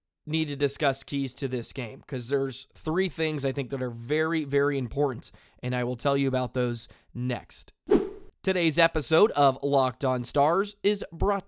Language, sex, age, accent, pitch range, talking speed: English, male, 20-39, American, 130-165 Hz, 180 wpm